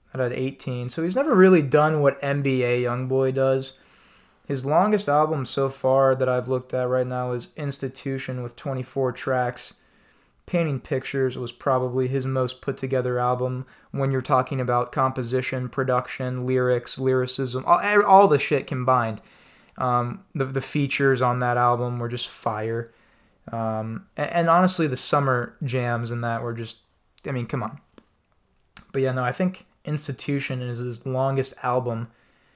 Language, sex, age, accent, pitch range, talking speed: English, male, 20-39, American, 120-140 Hz, 155 wpm